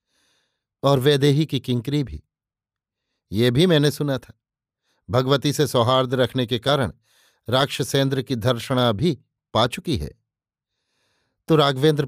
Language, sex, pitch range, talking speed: Hindi, male, 120-145 Hz, 125 wpm